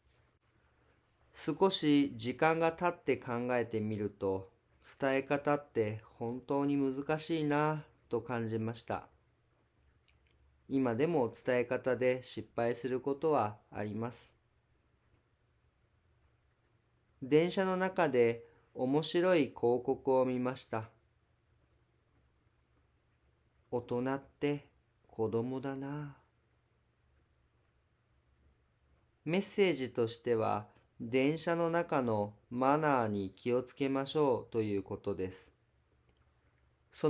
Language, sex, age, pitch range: Japanese, male, 40-59, 110-145 Hz